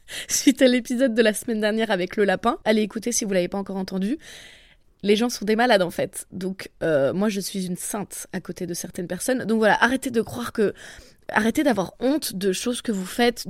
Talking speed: 230 wpm